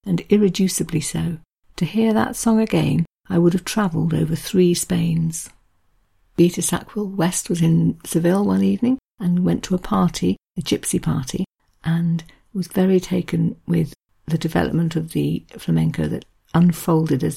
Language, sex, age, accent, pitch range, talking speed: English, female, 50-69, British, 155-190 Hz, 150 wpm